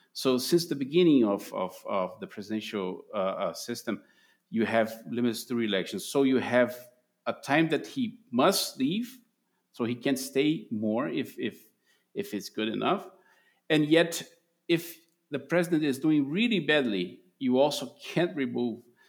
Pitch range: 110-135 Hz